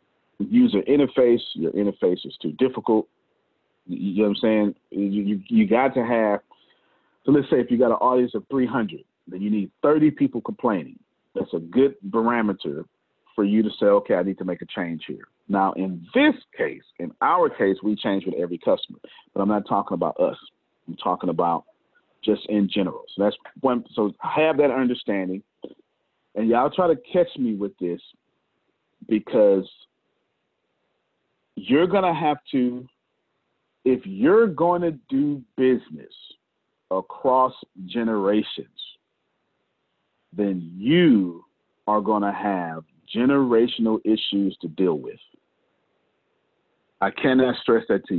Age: 40-59